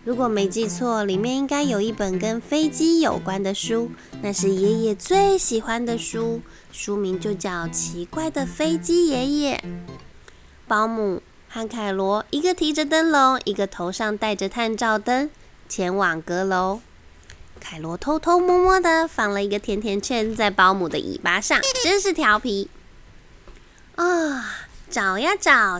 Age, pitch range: 20-39, 205-310 Hz